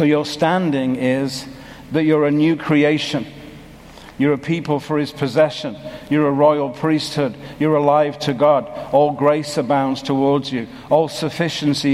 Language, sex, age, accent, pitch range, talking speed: English, male, 60-79, British, 145-160 Hz, 150 wpm